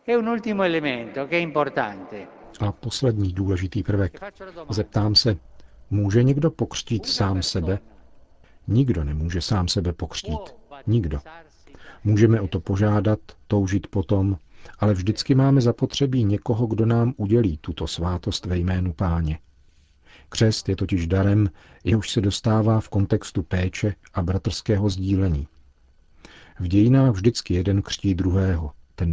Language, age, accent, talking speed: Czech, 50-69, native, 115 wpm